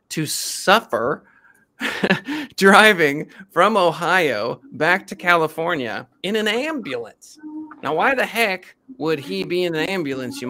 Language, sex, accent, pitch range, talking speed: English, male, American, 150-230 Hz, 125 wpm